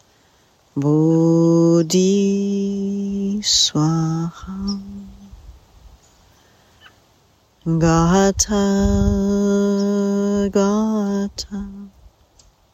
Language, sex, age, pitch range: English, female, 40-59, 140-195 Hz